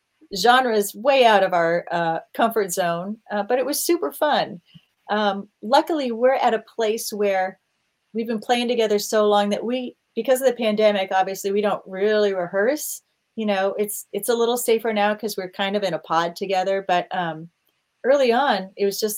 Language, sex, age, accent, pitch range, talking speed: English, female, 30-49, American, 175-220 Hz, 195 wpm